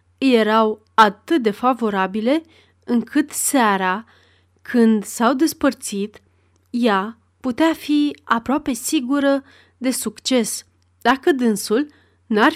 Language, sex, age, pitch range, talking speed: Romanian, female, 30-49, 200-265 Hz, 90 wpm